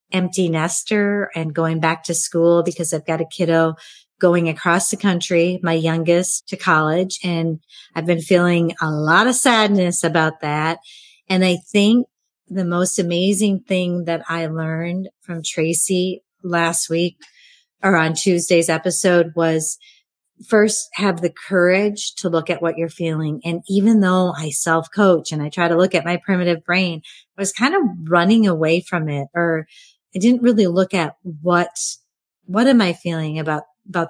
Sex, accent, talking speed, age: female, American, 165 wpm, 40-59